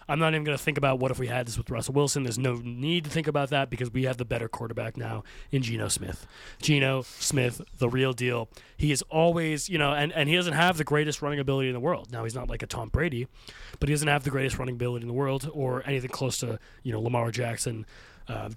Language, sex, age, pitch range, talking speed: English, male, 20-39, 120-140 Hz, 260 wpm